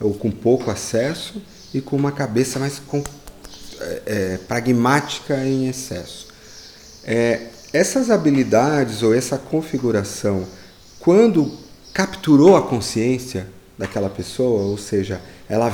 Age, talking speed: 40-59, 100 wpm